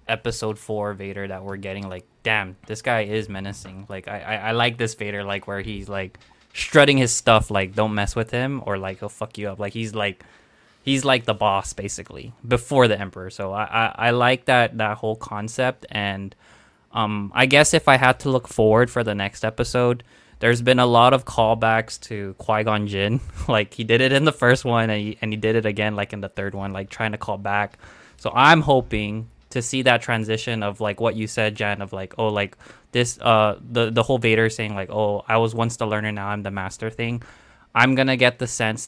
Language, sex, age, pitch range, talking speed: English, male, 20-39, 105-120 Hz, 230 wpm